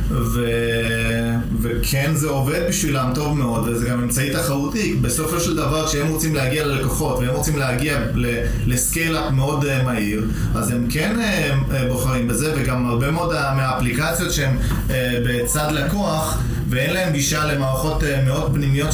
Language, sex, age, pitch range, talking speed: Hebrew, male, 20-39, 120-150 Hz, 150 wpm